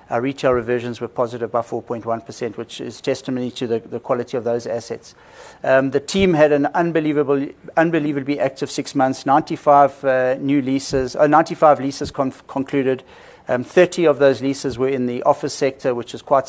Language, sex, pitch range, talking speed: English, male, 130-145 Hz, 180 wpm